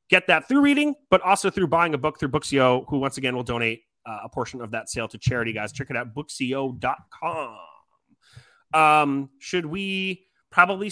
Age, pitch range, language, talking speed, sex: 30-49, 130-185 Hz, English, 185 wpm, male